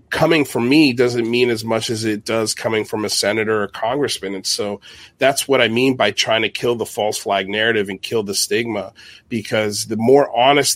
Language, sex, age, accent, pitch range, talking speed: English, male, 30-49, American, 100-120 Hz, 210 wpm